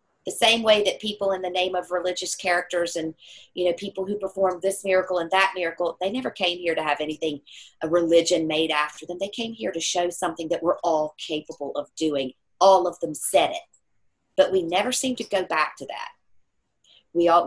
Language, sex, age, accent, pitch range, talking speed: English, female, 40-59, American, 175-215 Hz, 215 wpm